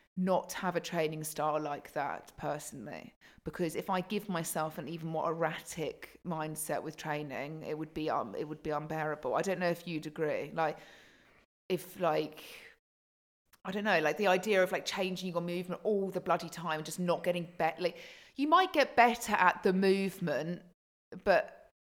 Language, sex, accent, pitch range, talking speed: English, female, British, 155-185 Hz, 180 wpm